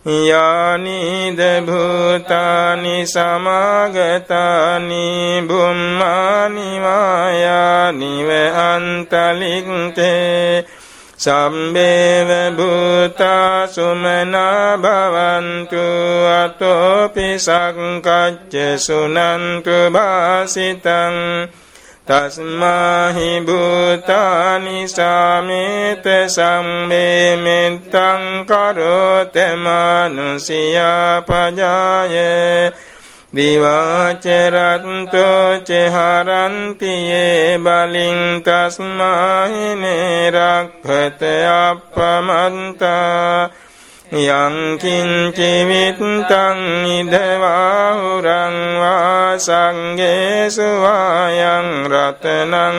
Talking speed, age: 35 wpm, 60-79